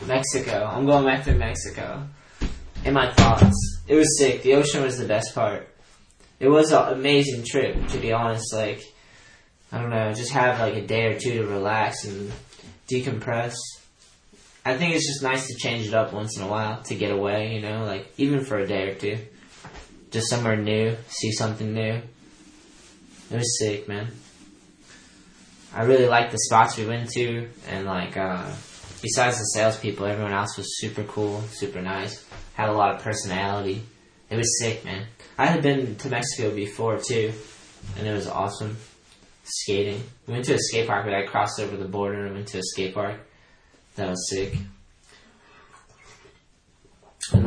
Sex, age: male, 10-29